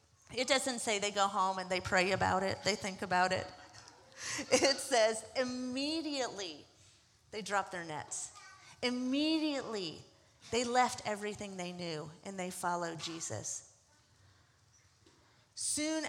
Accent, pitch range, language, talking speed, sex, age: American, 175-240 Hz, English, 125 wpm, female, 40-59